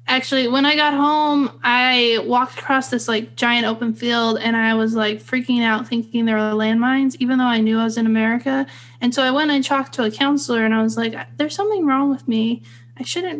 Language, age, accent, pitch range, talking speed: English, 10-29, American, 220-265 Hz, 230 wpm